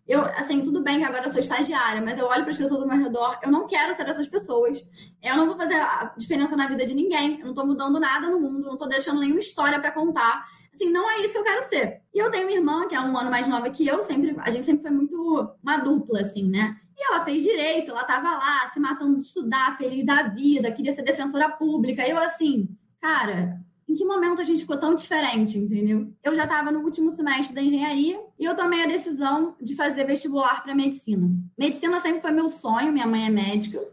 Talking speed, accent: 240 wpm, Brazilian